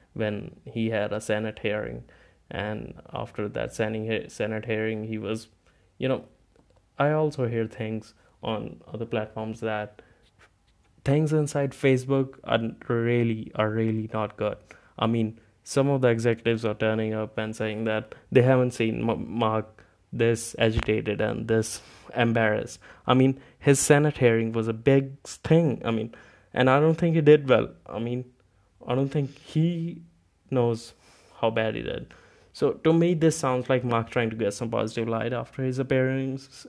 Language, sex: English, male